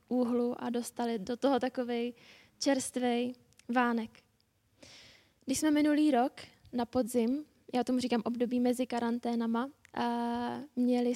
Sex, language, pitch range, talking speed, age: female, Czech, 235-260 Hz, 120 wpm, 10-29